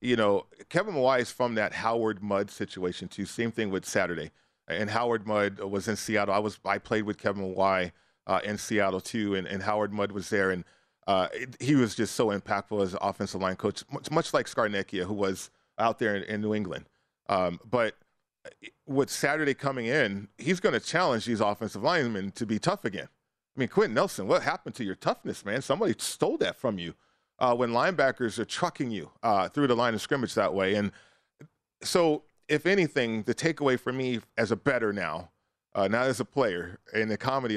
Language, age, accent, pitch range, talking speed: English, 40-59, American, 100-125 Hz, 205 wpm